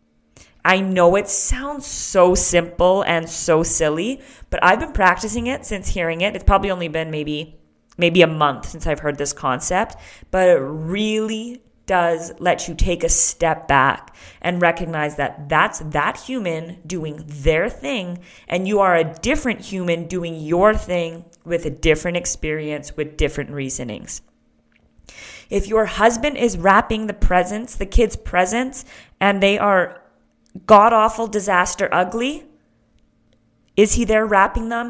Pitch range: 160-205 Hz